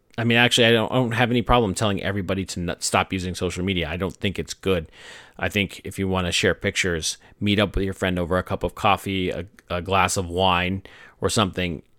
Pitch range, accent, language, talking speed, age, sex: 90-110 Hz, American, English, 230 wpm, 30-49, male